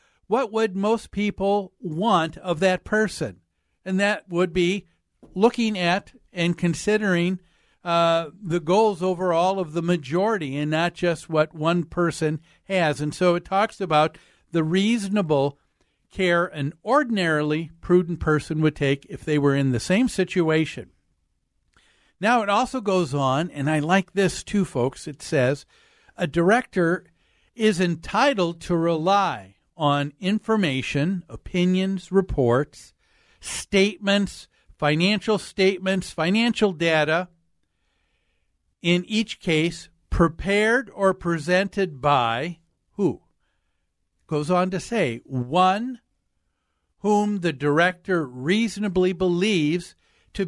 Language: English